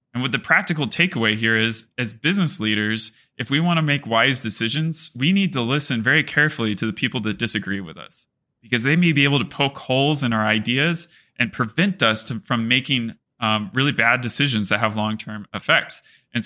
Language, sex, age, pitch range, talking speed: English, male, 20-39, 110-140 Hz, 205 wpm